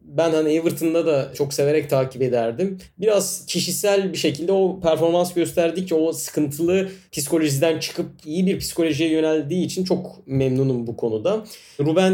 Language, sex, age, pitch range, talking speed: Turkish, male, 30-49, 135-175 Hz, 145 wpm